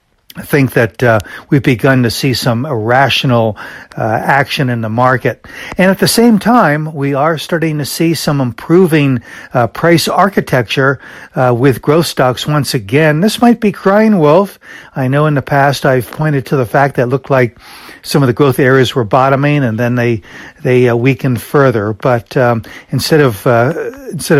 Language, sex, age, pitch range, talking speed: English, male, 60-79, 120-145 Hz, 185 wpm